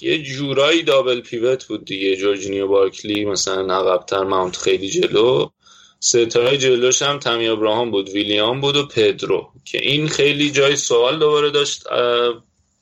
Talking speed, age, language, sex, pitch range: 145 wpm, 20-39, Persian, male, 105-140 Hz